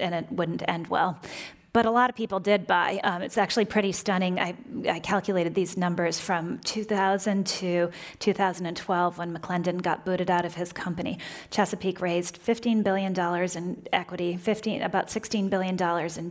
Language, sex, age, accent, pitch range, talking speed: English, female, 30-49, American, 175-205 Hz, 160 wpm